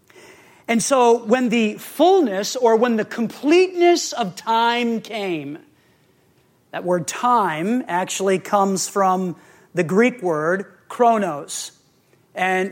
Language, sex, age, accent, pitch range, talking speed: English, male, 40-59, American, 180-230 Hz, 110 wpm